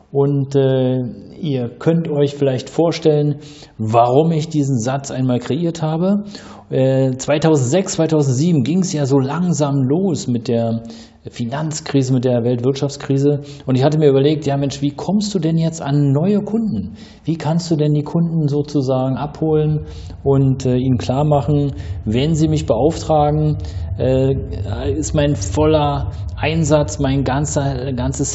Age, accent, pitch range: 40-59, German, 120-150 Hz